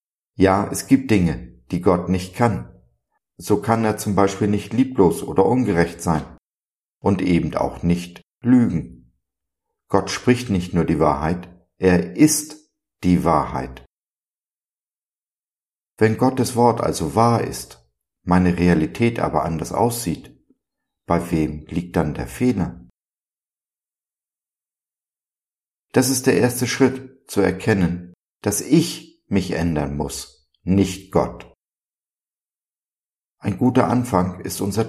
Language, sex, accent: German, male, German